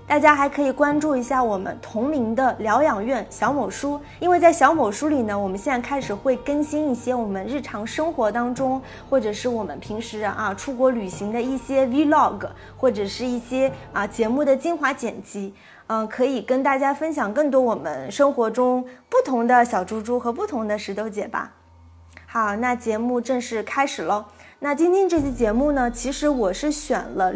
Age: 20-39